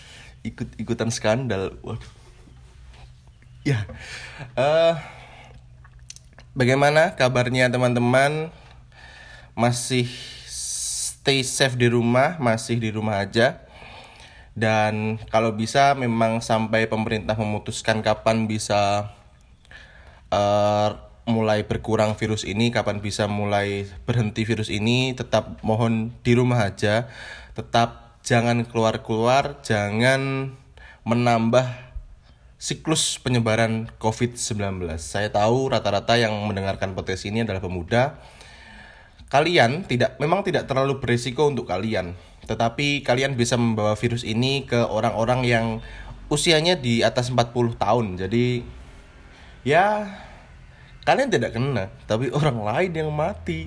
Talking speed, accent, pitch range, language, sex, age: 105 wpm, native, 100-125 Hz, Indonesian, male, 20-39